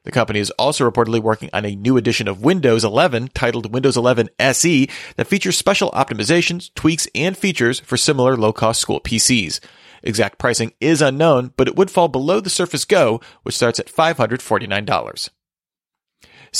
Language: English